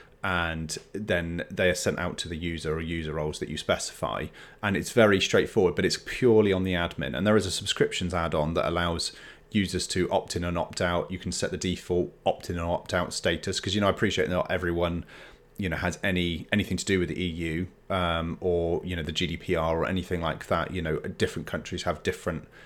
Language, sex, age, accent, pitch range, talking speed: English, male, 30-49, British, 85-100 Hz, 215 wpm